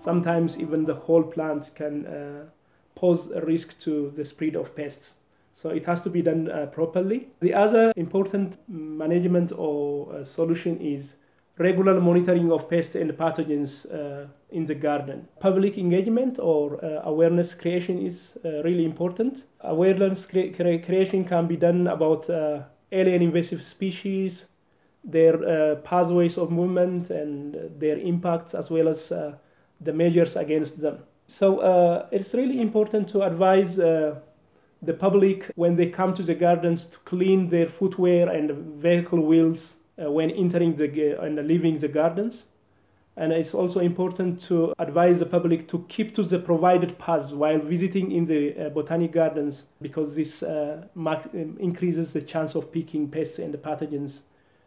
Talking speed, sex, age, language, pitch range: 155 wpm, male, 30-49, English, 150-180 Hz